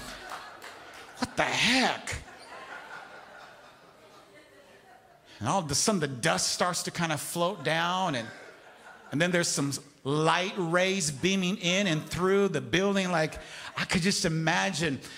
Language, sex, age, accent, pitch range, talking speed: English, male, 50-69, American, 150-190 Hz, 130 wpm